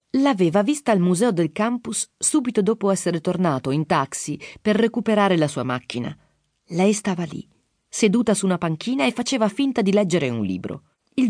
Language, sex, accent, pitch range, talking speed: Italian, female, native, 150-220 Hz, 170 wpm